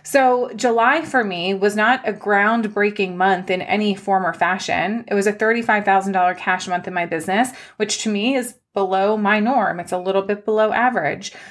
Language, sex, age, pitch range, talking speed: English, female, 30-49, 190-230 Hz, 190 wpm